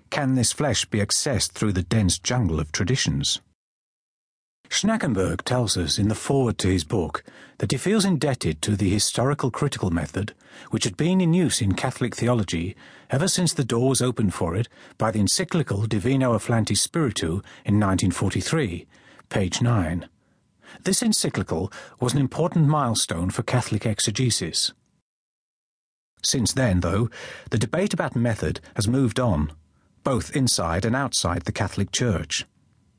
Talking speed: 145 wpm